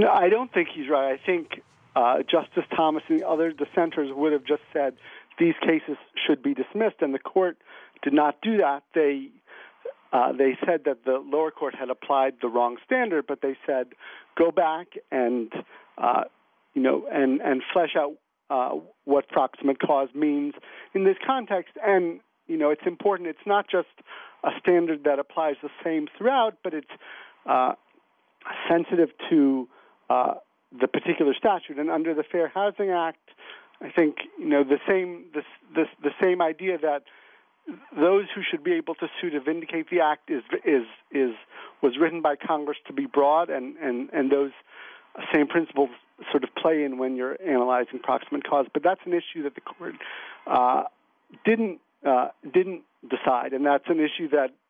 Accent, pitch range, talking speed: American, 140-180 Hz, 175 wpm